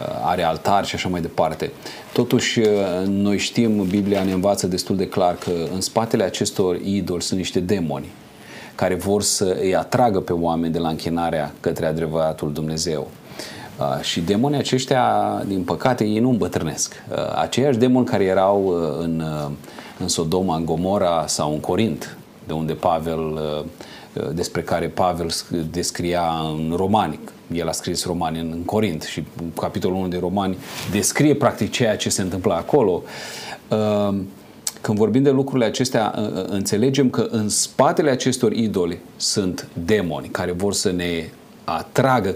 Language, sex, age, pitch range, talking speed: Romanian, male, 30-49, 85-105 Hz, 145 wpm